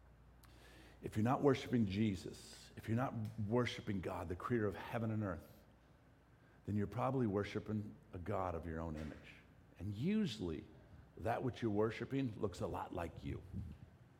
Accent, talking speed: American, 155 wpm